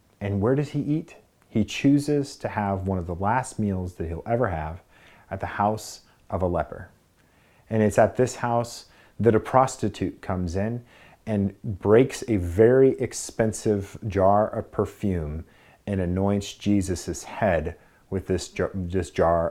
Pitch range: 95-115 Hz